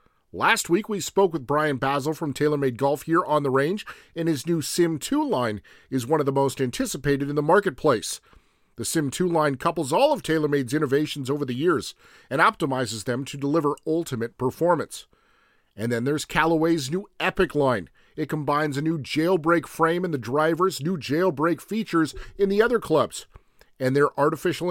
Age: 40-59